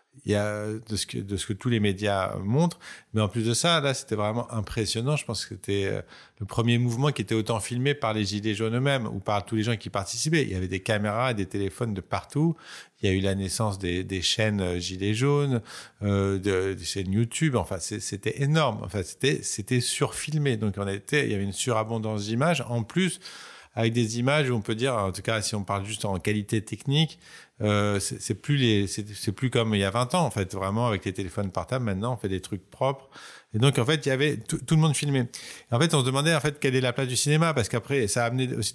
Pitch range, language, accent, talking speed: 105-135 Hz, French, French, 255 wpm